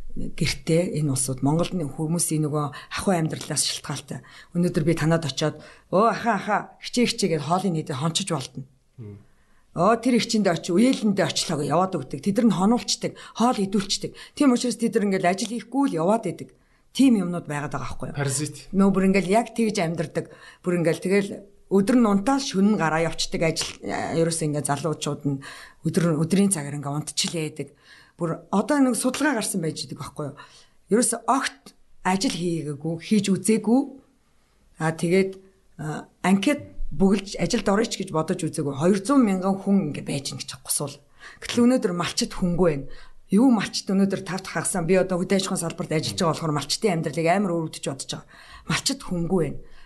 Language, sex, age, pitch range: Korean, female, 50-69, 155-210 Hz